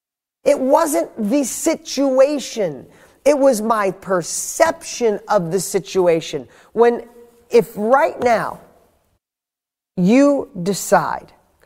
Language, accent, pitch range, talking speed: English, American, 170-235 Hz, 90 wpm